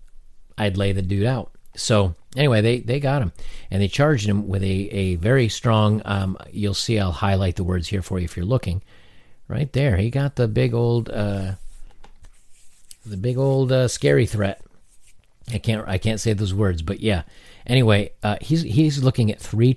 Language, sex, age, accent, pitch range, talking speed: English, male, 40-59, American, 95-120 Hz, 190 wpm